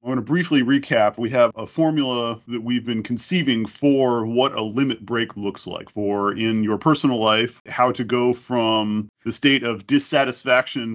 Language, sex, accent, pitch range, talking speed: English, male, American, 105-130 Hz, 180 wpm